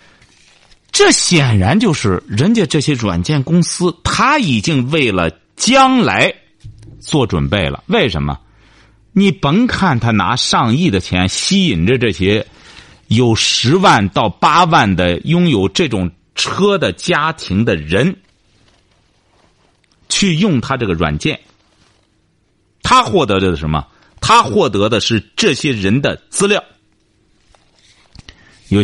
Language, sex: Chinese, male